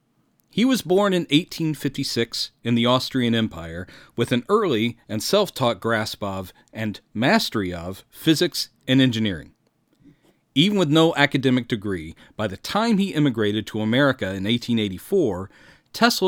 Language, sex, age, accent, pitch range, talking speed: English, male, 40-59, American, 110-150 Hz, 135 wpm